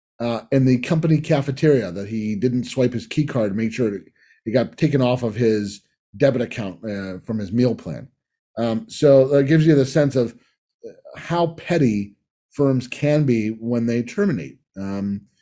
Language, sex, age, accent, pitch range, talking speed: English, male, 30-49, American, 115-145 Hz, 175 wpm